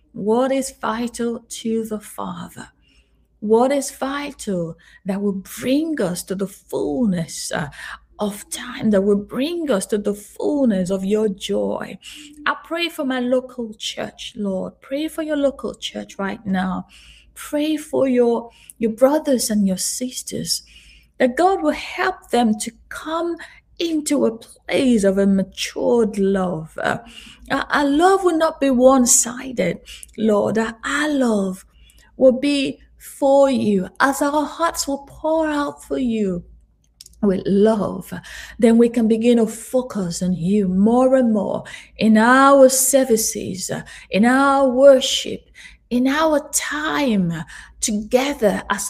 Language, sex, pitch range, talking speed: English, female, 205-275 Hz, 135 wpm